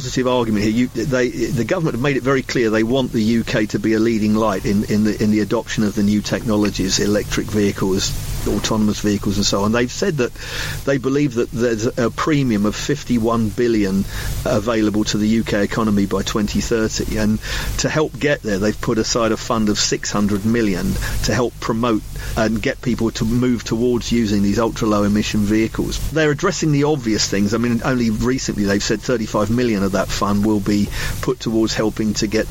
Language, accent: English, British